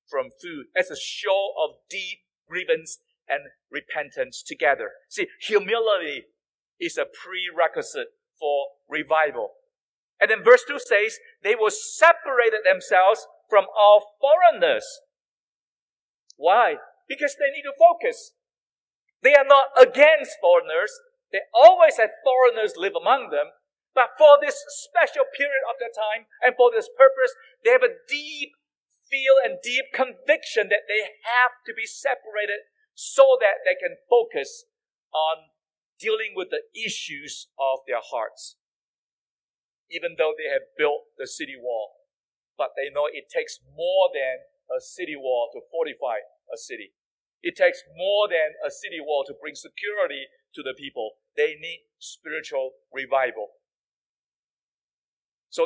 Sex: male